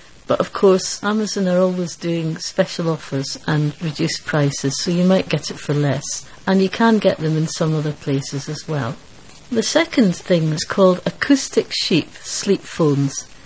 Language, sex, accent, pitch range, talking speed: English, female, British, 155-190 Hz, 175 wpm